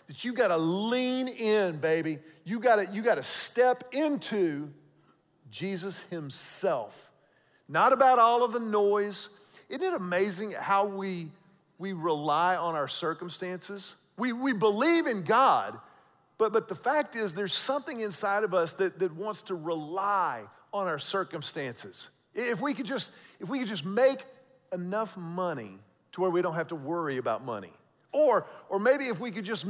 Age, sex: 40-59, male